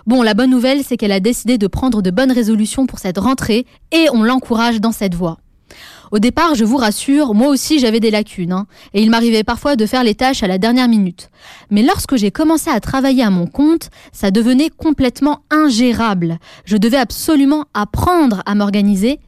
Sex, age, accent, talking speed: female, 20-39, French, 200 wpm